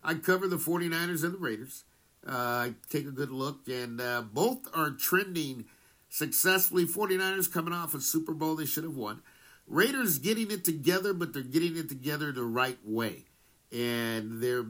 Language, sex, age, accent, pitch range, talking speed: English, male, 50-69, American, 125-175 Hz, 170 wpm